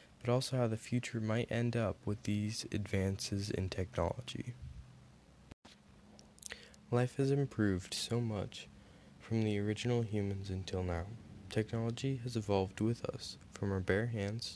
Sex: male